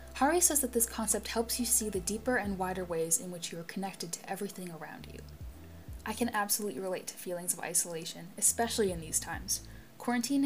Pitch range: 175-230 Hz